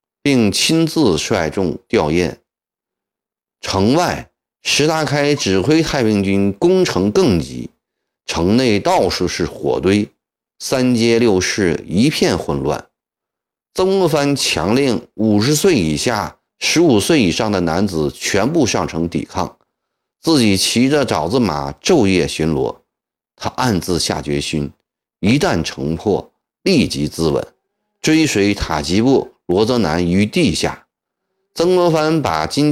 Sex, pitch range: male, 85-140 Hz